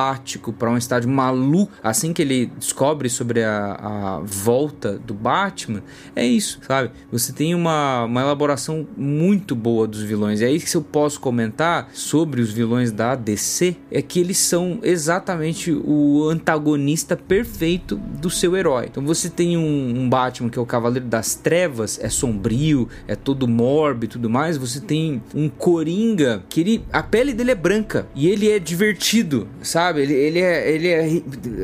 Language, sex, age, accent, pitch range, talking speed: Portuguese, male, 20-39, Brazilian, 125-175 Hz, 175 wpm